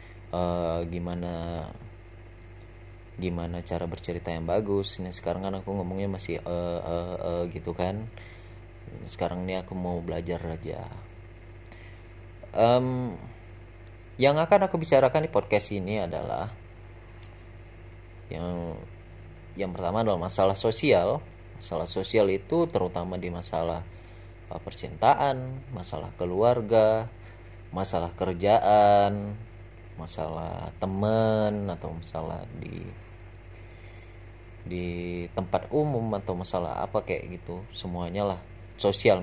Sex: male